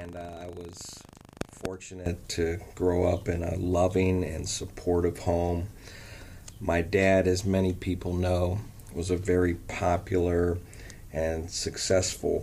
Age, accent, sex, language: 40-59, American, male, English